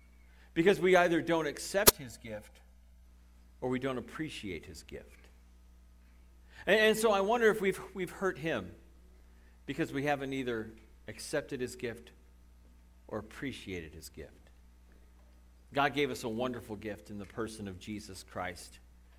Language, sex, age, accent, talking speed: English, male, 50-69, American, 145 wpm